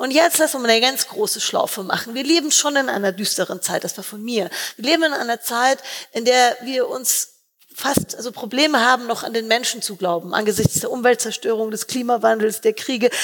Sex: female